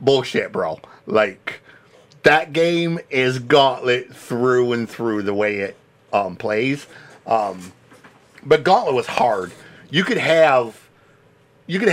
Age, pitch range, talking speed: 50-69, 105-140 Hz, 125 wpm